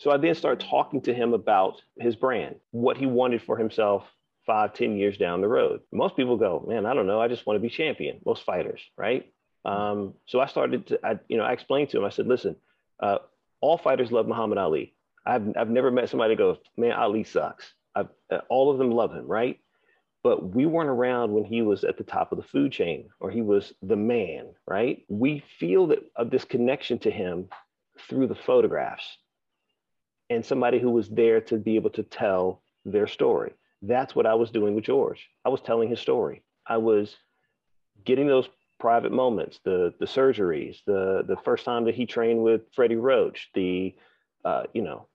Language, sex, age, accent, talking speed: English, male, 40-59, American, 200 wpm